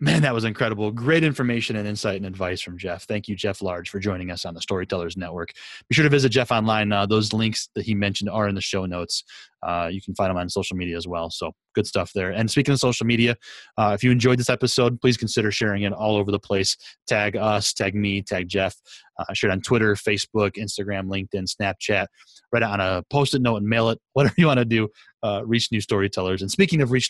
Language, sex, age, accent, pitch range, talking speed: English, male, 30-49, American, 95-115 Hz, 245 wpm